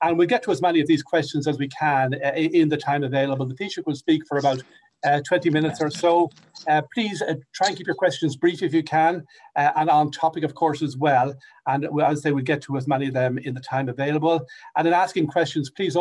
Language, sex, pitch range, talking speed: English, male, 135-165 Hz, 255 wpm